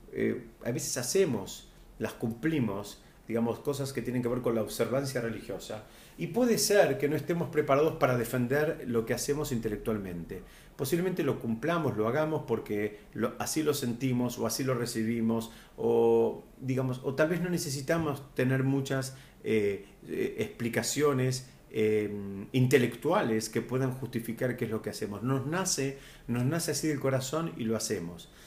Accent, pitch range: Argentinian, 115-145 Hz